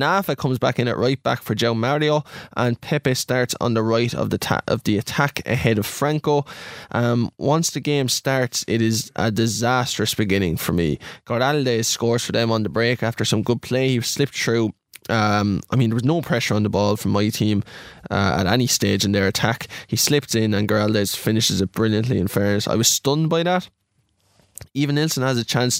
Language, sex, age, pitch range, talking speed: English, male, 10-29, 110-130 Hz, 210 wpm